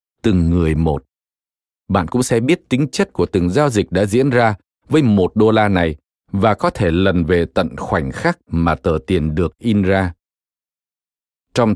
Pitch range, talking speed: 80-120 Hz, 185 wpm